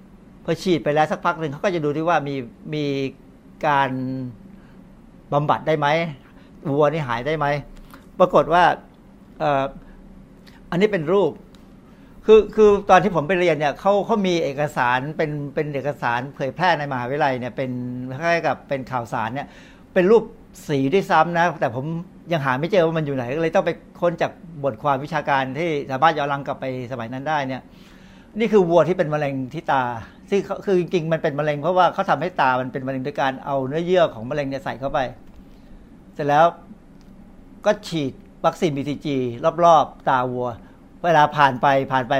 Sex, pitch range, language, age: male, 140-185 Hz, Thai, 60-79